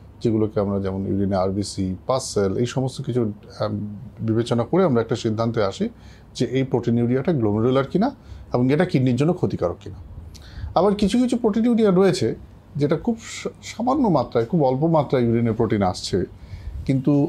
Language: English